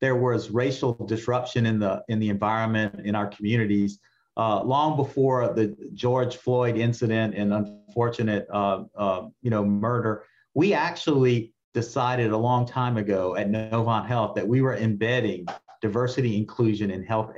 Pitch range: 120-155 Hz